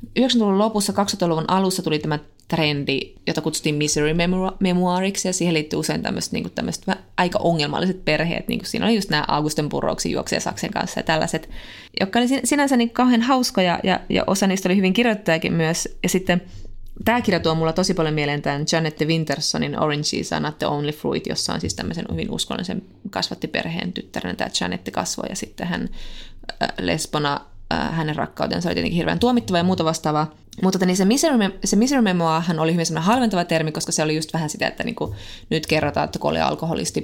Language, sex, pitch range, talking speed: Finnish, female, 155-200 Hz, 185 wpm